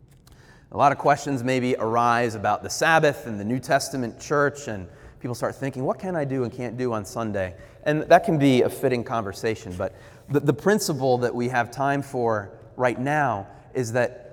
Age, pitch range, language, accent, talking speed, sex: 30-49, 120-145 Hz, English, American, 195 wpm, male